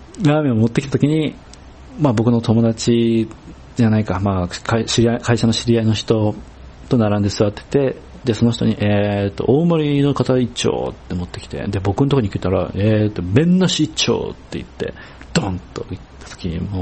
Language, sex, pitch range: Japanese, male, 90-120 Hz